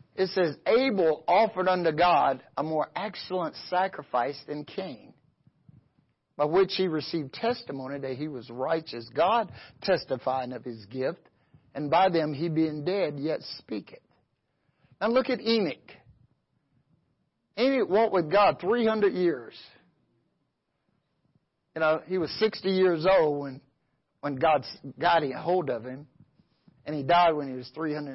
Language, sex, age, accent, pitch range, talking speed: English, male, 50-69, American, 140-205 Hz, 145 wpm